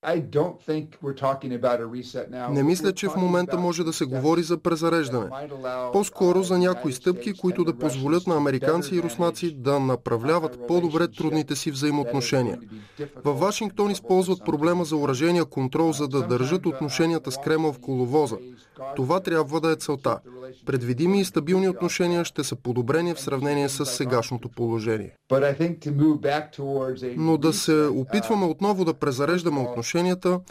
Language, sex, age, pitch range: Bulgarian, male, 20-39, 140-175 Hz